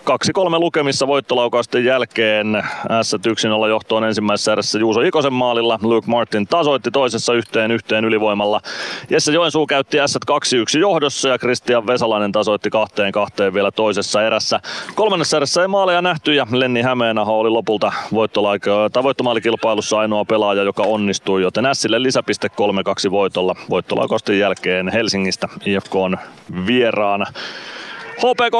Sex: male